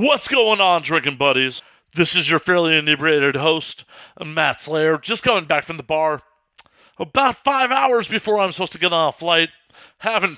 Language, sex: English, male